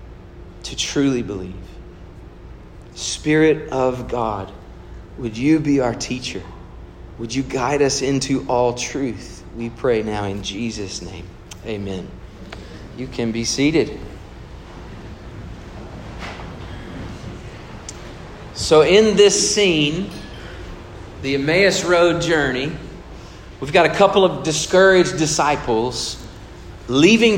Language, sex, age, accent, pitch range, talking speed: English, male, 40-59, American, 100-155 Hz, 100 wpm